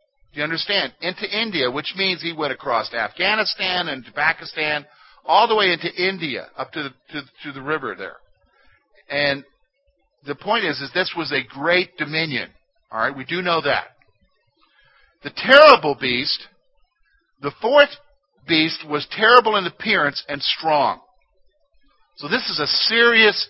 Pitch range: 145-210 Hz